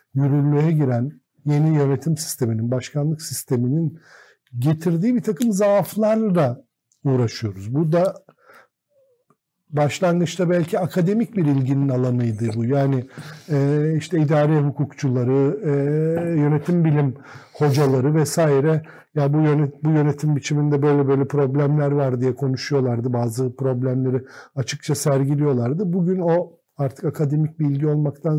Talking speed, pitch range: 115 wpm, 135-170 Hz